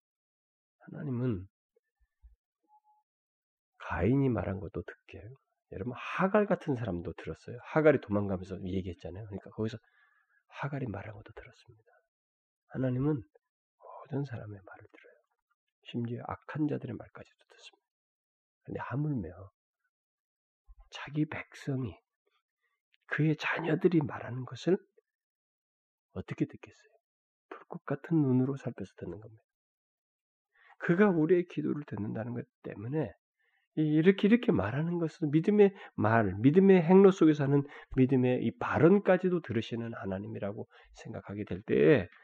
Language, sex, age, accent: Korean, male, 40-59, native